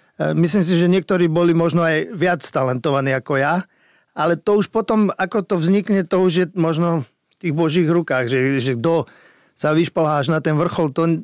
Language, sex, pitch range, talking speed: Slovak, male, 145-175 Hz, 185 wpm